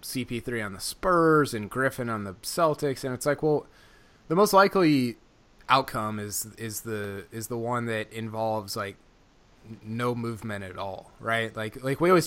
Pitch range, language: 110-135 Hz, English